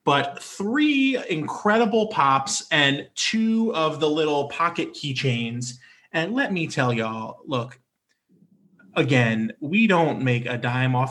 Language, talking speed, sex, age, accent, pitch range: English, 130 wpm, male, 20-39, American, 120-150 Hz